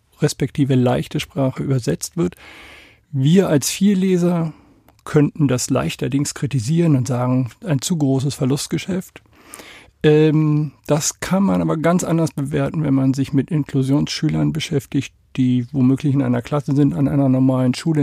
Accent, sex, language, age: German, male, German, 50-69